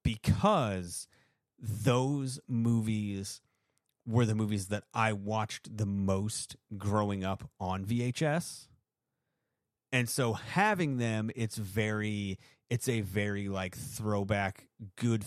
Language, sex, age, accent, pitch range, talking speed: English, male, 30-49, American, 100-125 Hz, 105 wpm